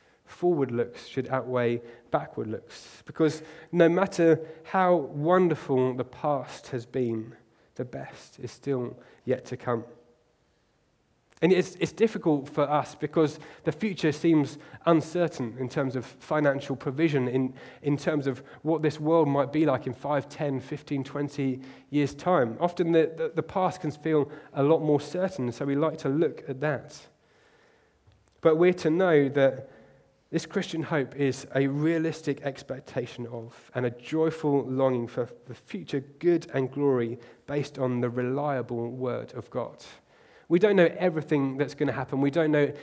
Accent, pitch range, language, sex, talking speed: British, 130-160 Hz, English, male, 160 wpm